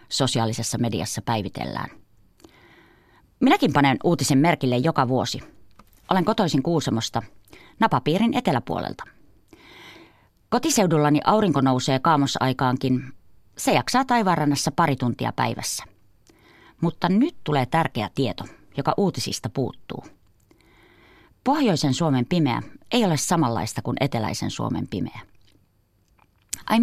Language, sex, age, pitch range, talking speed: Finnish, female, 30-49, 120-170 Hz, 95 wpm